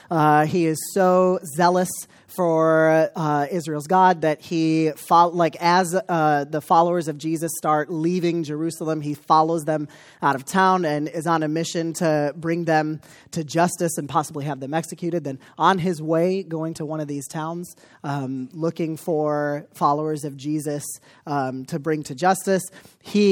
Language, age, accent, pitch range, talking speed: English, 30-49, American, 155-190 Hz, 165 wpm